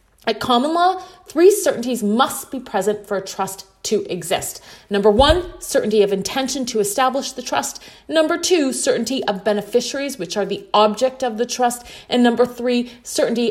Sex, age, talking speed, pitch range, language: female, 30-49, 170 wpm, 195-245 Hz, English